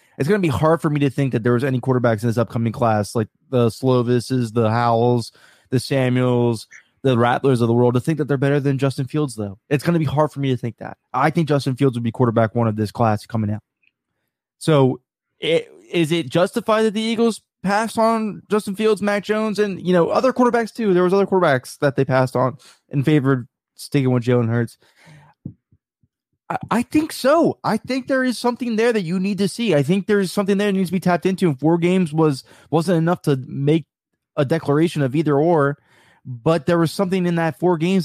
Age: 20-39